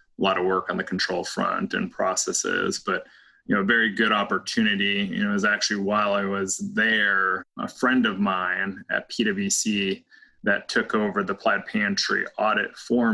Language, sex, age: English, male, 20-39